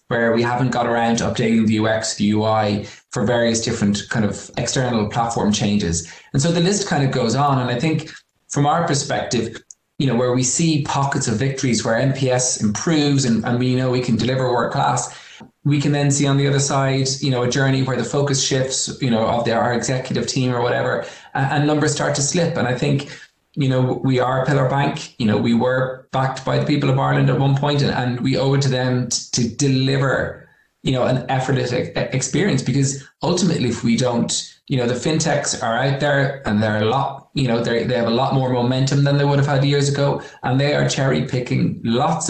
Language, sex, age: English, male, 20-39